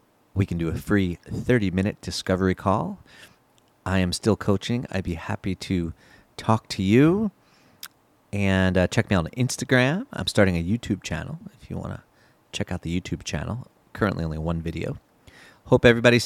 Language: English